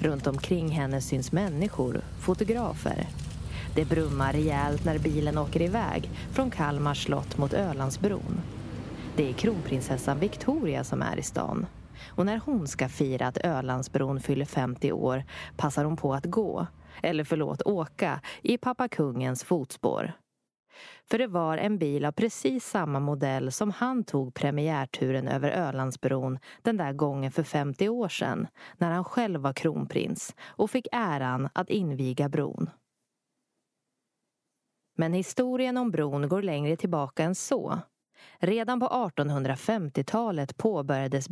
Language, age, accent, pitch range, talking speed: Swedish, 30-49, native, 135-195 Hz, 135 wpm